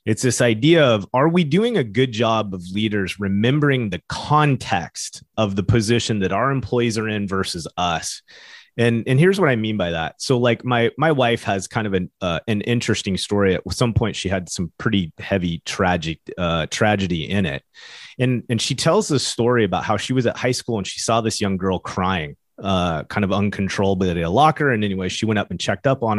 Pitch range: 95-125 Hz